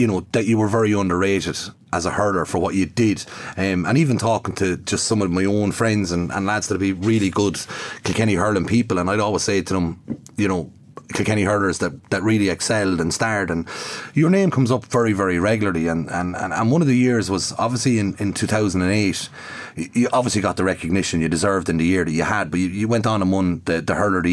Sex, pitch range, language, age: male, 95-115 Hz, English, 30-49